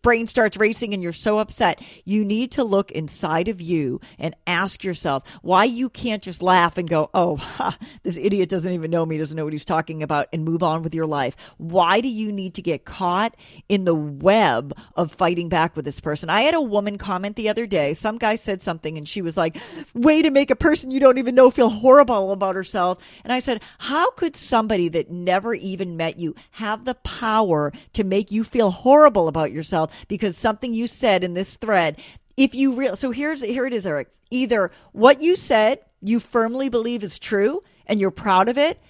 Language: English